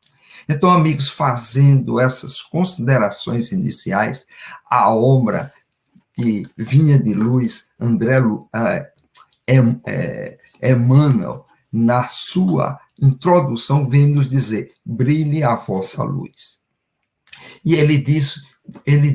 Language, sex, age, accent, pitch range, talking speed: Portuguese, male, 60-79, Brazilian, 130-180 Hz, 100 wpm